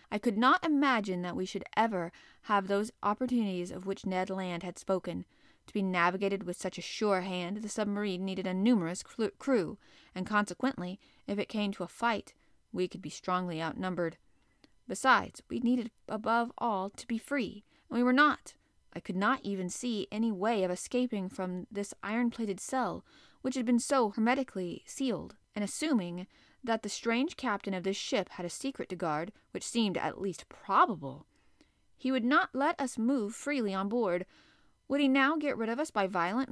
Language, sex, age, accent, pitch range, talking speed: English, female, 30-49, American, 185-240 Hz, 185 wpm